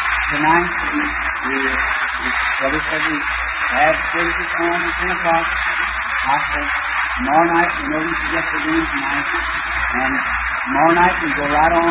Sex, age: male, 50-69